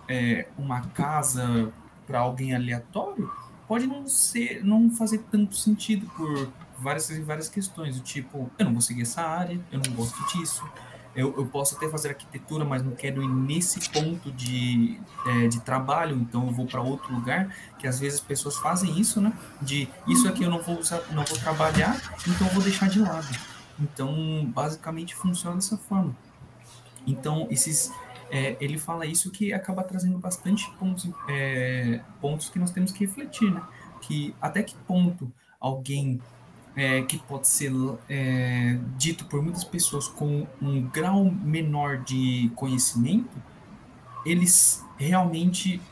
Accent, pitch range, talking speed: Brazilian, 130-180 Hz, 155 wpm